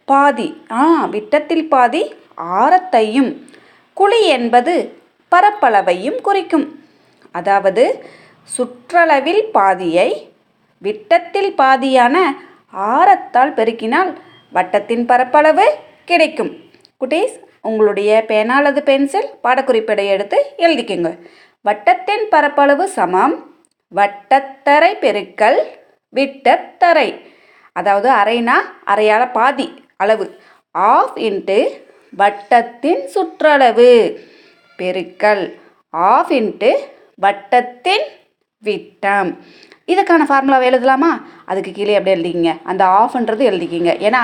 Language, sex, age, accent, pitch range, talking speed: Tamil, female, 30-49, native, 215-355 Hz, 55 wpm